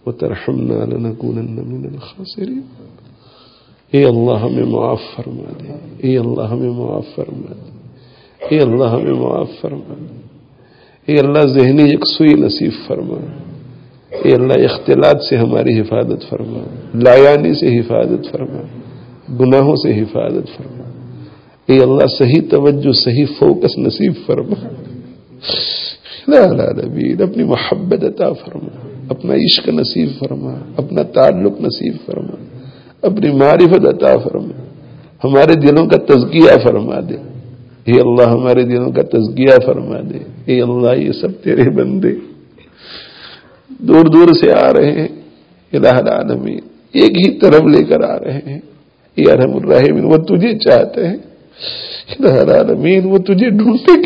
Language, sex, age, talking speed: English, male, 50-69, 115 wpm